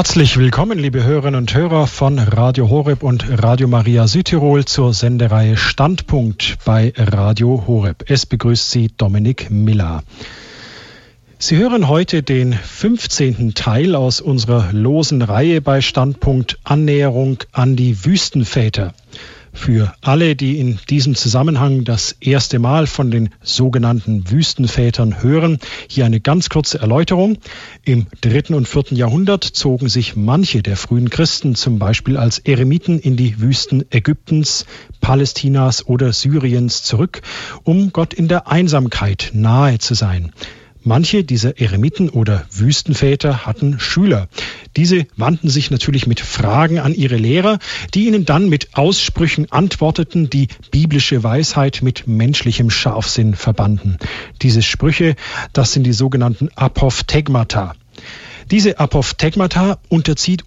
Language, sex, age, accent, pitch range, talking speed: German, male, 50-69, German, 115-150 Hz, 130 wpm